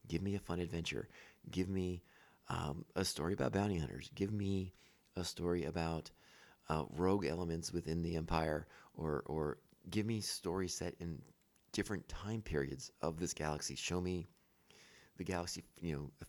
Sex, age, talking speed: male, 30-49, 160 wpm